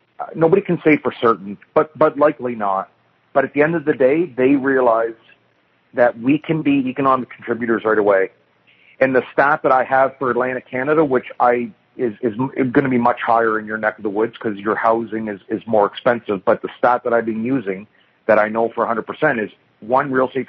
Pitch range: 115-130 Hz